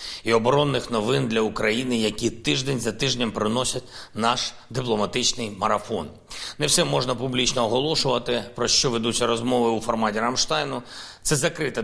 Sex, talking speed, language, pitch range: male, 135 wpm, Ukrainian, 115-145 Hz